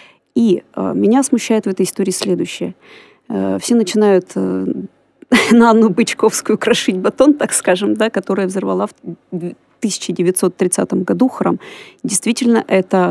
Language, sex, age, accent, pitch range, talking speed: Russian, female, 30-49, native, 185-235 Hz, 130 wpm